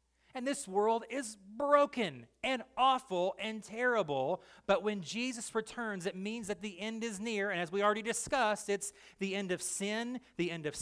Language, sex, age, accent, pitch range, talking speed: English, male, 30-49, American, 175-215 Hz, 185 wpm